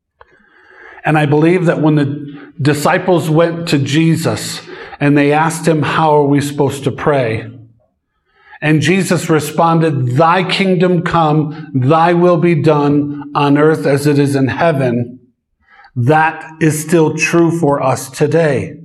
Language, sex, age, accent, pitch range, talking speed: English, male, 50-69, American, 135-165 Hz, 140 wpm